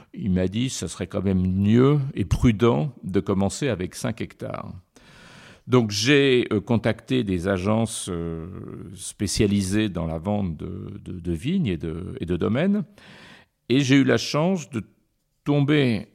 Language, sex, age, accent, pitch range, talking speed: French, male, 50-69, French, 95-125 Hz, 150 wpm